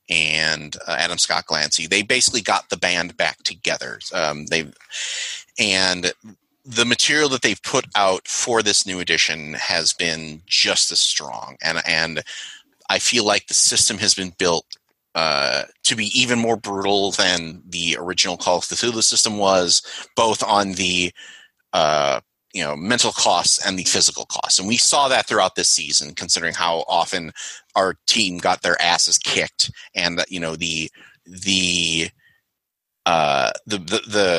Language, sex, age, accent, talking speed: English, male, 30-49, American, 160 wpm